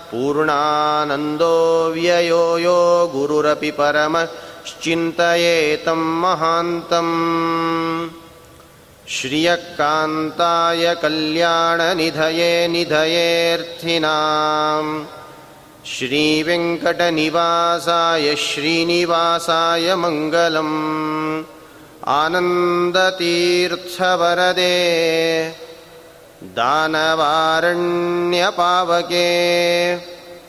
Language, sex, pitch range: Kannada, male, 155-175 Hz